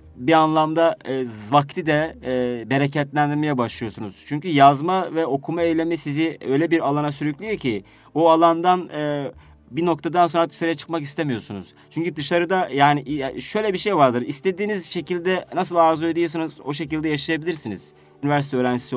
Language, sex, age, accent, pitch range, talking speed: Turkish, male, 30-49, native, 130-165 Hz, 140 wpm